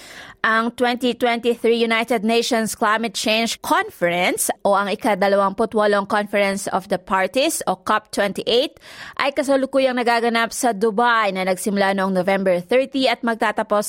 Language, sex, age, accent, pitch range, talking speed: Filipino, female, 20-39, native, 210-245 Hz, 120 wpm